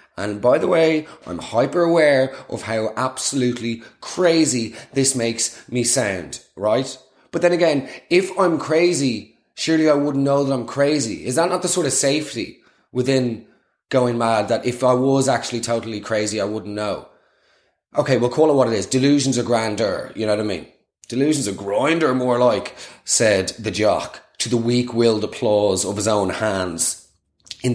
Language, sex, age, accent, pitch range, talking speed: English, male, 20-39, Irish, 110-140 Hz, 175 wpm